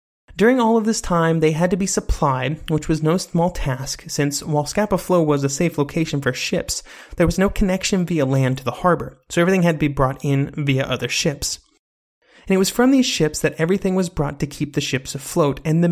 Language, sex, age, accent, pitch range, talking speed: English, male, 30-49, American, 150-190 Hz, 230 wpm